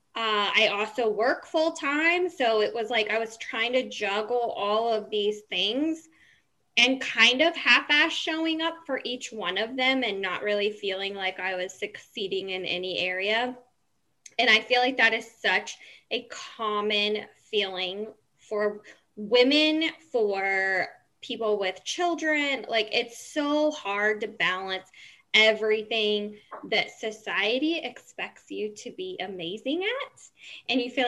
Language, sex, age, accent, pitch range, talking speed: English, female, 10-29, American, 210-265 Hz, 145 wpm